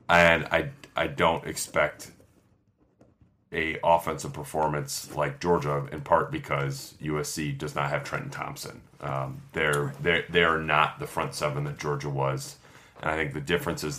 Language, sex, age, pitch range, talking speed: English, male, 30-49, 75-90 Hz, 150 wpm